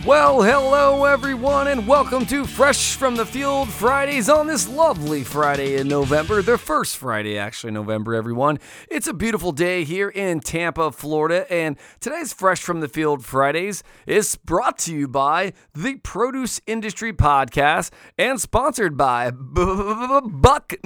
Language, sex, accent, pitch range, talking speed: English, male, American, 160-265 Hz, 145 wpm